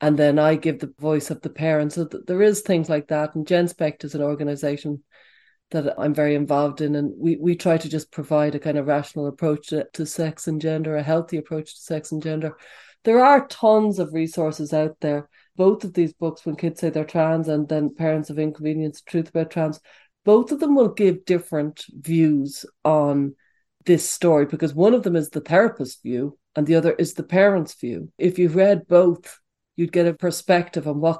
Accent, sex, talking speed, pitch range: Irish, female, 210 wpm, 150-180 Hz